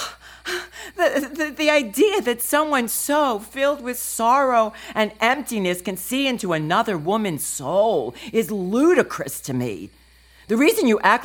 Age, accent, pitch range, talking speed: 50-69, American, 215-295 Hz, 140 wpm